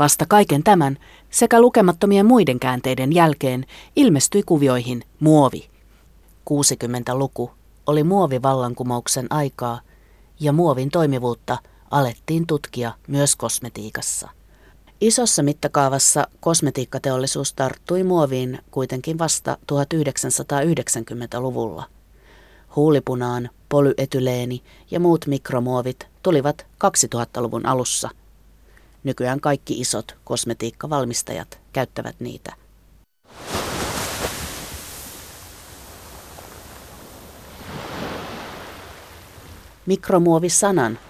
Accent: native